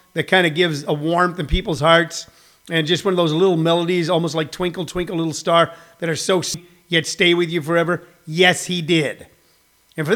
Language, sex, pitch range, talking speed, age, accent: English, male, 165-205 Hz, 215 wpm, 40-59, American